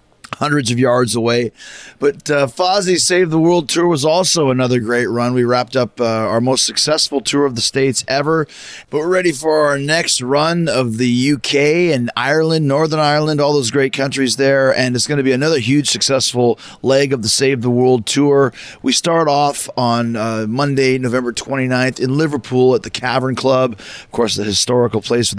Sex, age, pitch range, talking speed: male, 30-49, 125-145 Hz, 195 wpm